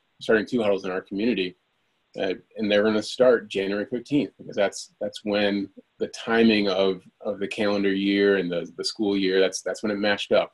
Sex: male